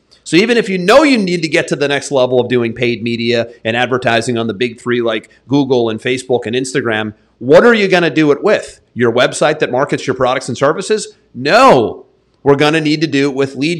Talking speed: 240 wpm